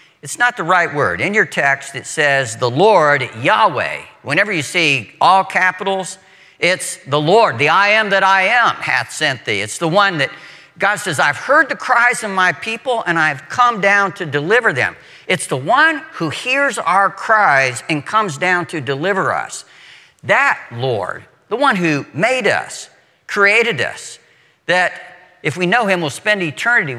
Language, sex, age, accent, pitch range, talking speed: English, male, 60-79, American, 140-200 Hz, 180 wpm